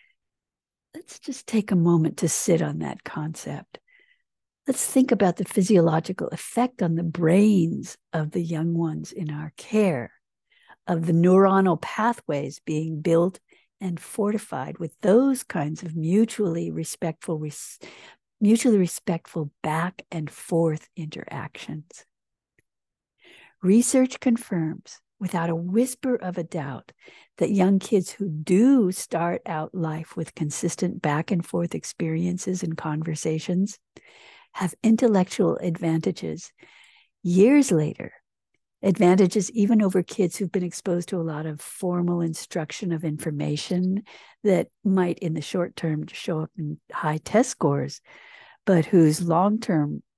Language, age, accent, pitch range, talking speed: English, 60-79, American, 160-205 Hz, 125 wpm